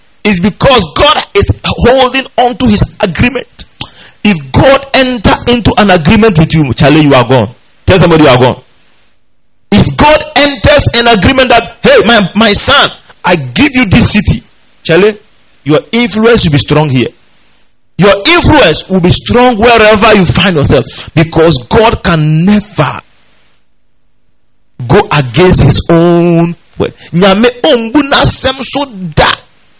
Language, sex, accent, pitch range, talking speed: English, male, Nigerian, 140-235 Hz, 135 wpm